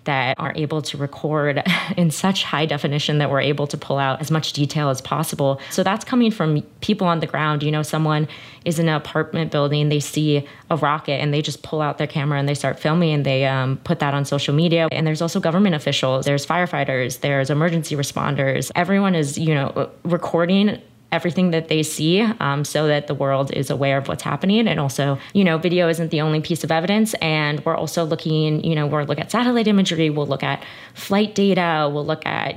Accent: American